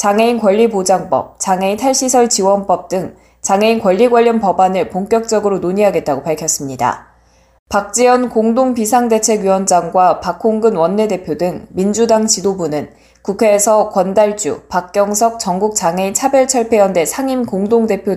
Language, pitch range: Korean, 180-225 Hz